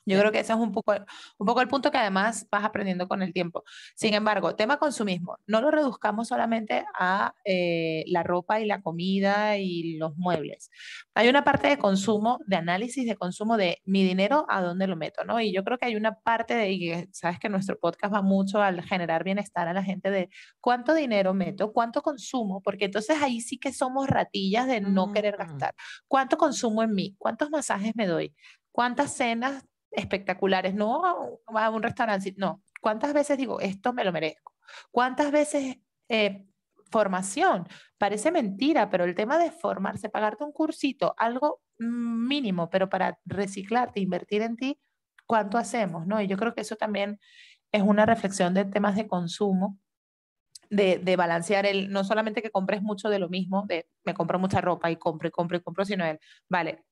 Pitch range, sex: 190-235 Hz, female